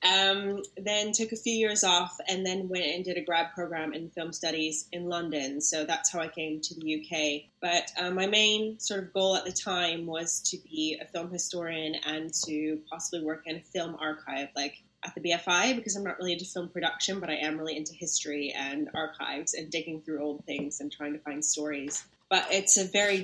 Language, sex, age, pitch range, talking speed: English, female, 20-39, 155-180 Hz, 220 wpm